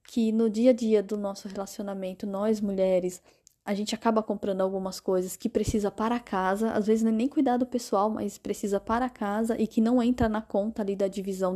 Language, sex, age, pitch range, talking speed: Portuguese, female, 10-29, 200-235 Hz, 195 wpm